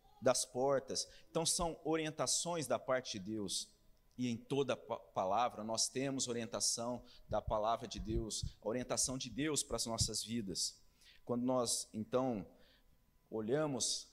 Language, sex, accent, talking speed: Portuguese, male, Brazilian, 130 wpm